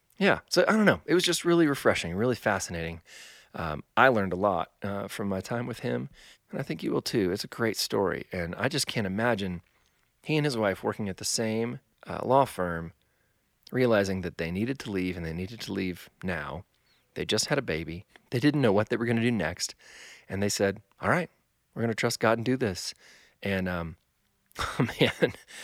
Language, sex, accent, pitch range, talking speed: English, male, American, 95-115 Hz, 215 wpm